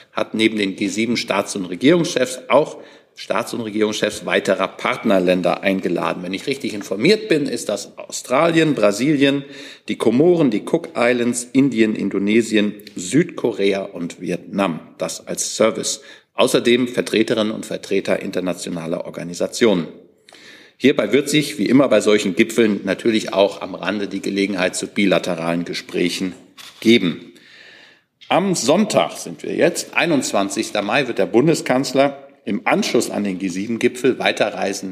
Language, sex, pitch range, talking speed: German, male, 100-135 Hz, 130 wpm